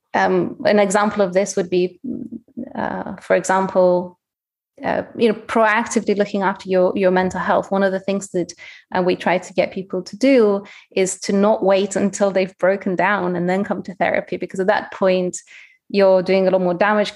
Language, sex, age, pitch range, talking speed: English, female, 30-49, 185-215 Hz, 195 wpm